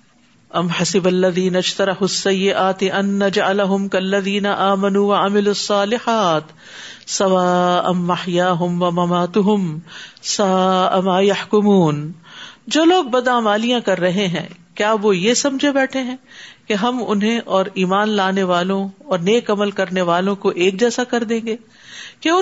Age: 50-69